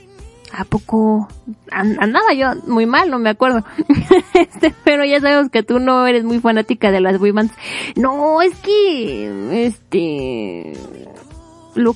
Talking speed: 140 wpm